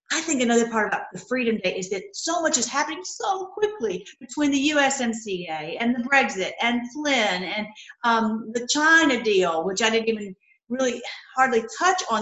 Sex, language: female, English